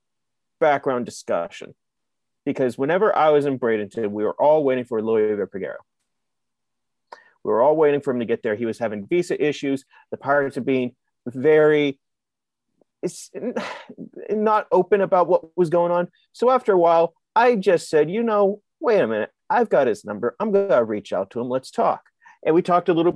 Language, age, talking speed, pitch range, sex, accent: English, 30-49, 185 wpm, 140-185 Hz, male, American